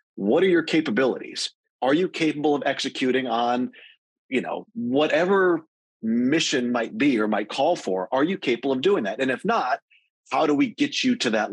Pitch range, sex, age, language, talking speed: 115-180 Hz, male, 40-59, English, 185 wpm